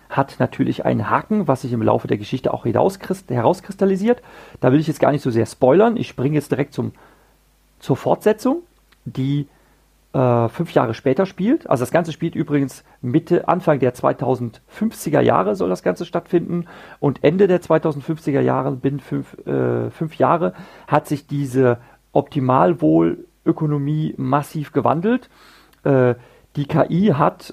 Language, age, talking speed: German, 40-59, 145 wpm